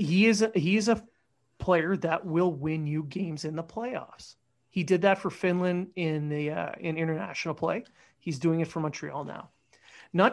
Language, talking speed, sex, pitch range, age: English, 170 wpm, male, 155-190 Hz, 30-49